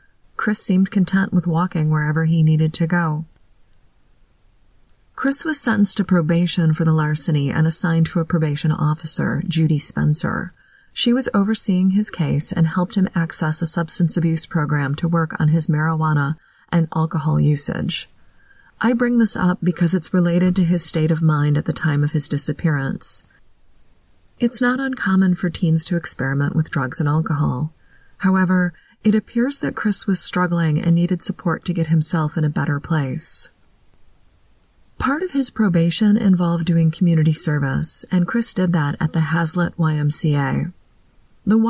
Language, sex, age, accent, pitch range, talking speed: English, female, 30-49, American, 150-185 Hz, 160 wpm